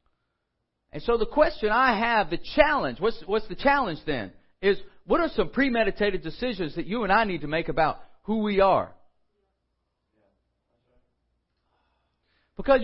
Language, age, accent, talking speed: English, 40-59, American, 145 wpm